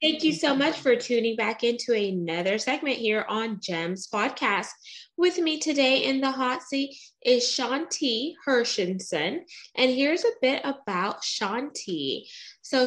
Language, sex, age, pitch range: English, female, 20-39, 210-275 Hz